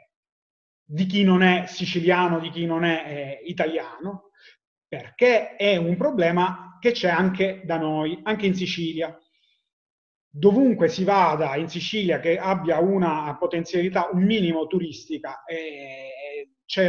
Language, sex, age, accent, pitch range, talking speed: Italian, male, 30-49, native, 165-200 Hz, 130 wpm